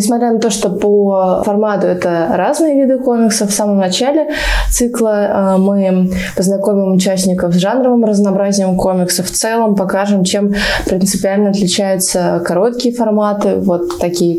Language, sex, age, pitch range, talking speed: Russian, female, 20-39, 185-215 Hz, 130 wpm